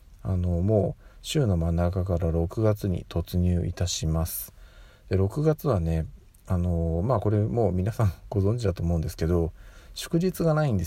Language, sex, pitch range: Japanese, male, 85-120 Hz